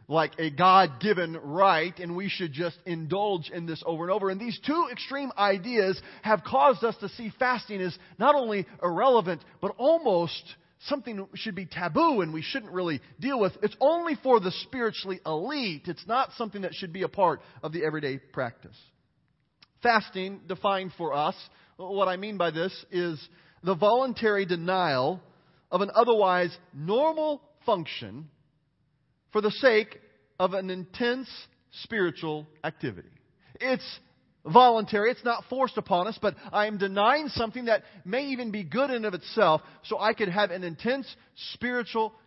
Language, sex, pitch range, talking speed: English, male, 160-220 Hz, 160 wpm